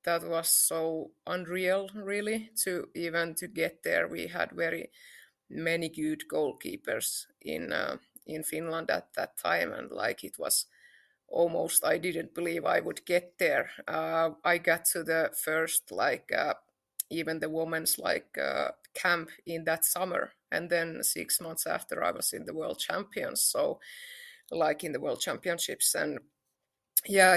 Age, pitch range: 30-49, 165-195 Hz